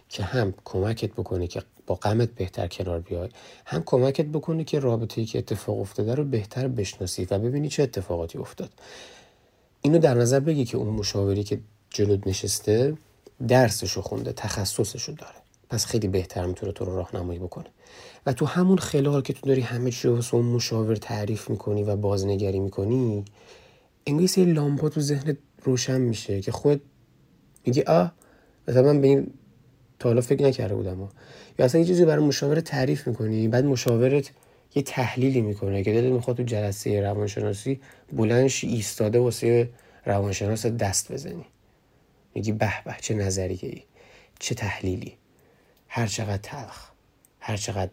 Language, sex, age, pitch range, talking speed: Persian, male, 30-49, 100-130 Hz, 145 wpm